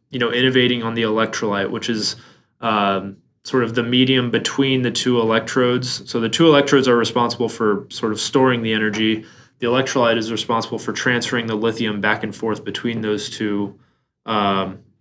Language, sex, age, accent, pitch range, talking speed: English, male, 20-39, American, 110-125 Hz, 175 wpm